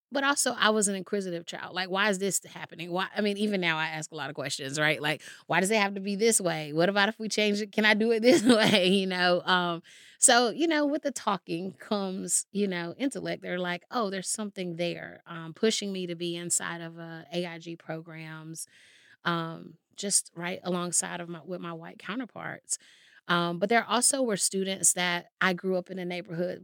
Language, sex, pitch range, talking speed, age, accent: English, female, 165-195 Hz, 220 wpm, 30-49, American